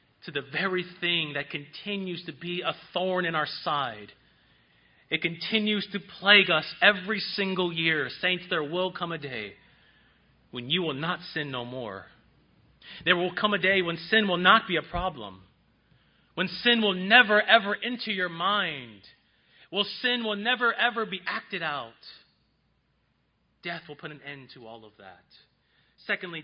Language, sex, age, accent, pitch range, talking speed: English, male, 30-49, American, 170-215 Hz, 165 wpm